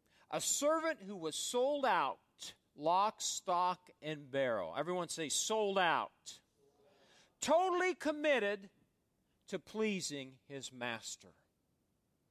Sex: male